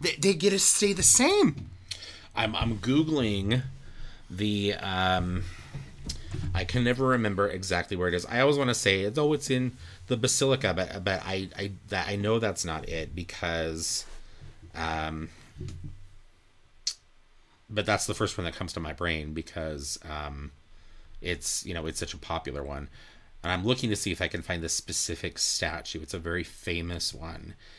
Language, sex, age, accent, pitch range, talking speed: English, male, 30-49, American, 85-110 Hz, 170 wpm